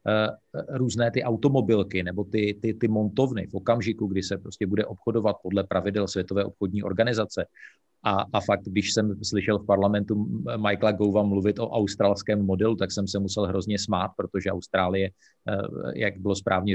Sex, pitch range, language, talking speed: male, 100-110 Hz, Czech, 160 wpm